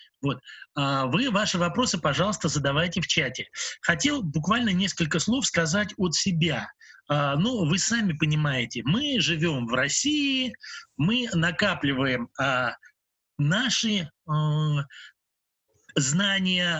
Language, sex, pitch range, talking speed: Russian, male, 155-210 Hz, 100 wpm